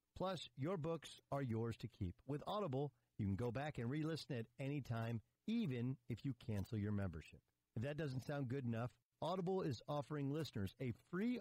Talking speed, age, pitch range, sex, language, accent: 190 wpm, 50-69, 105-145 Hz, male, English, American